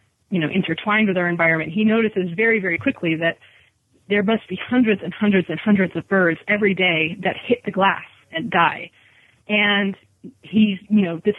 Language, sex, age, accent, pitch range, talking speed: English, female, 20-39, American, 175-205 Hz, 185 wpm